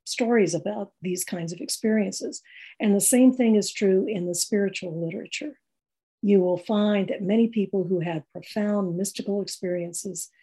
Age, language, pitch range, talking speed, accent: 60-79, English, 180-220 Hz, 155 wpm, American